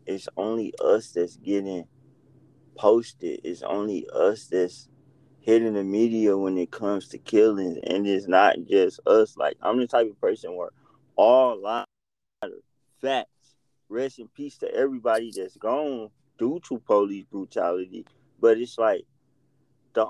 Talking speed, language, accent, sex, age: 145 wpm, English, American, male, 20-39